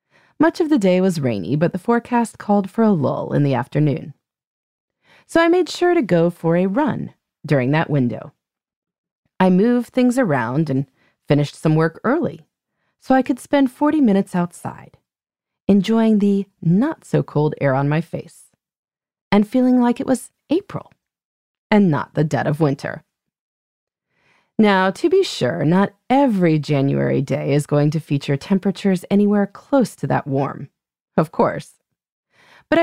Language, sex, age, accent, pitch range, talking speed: English, female, 30-49, American, 150-235 Hz, 155 wpm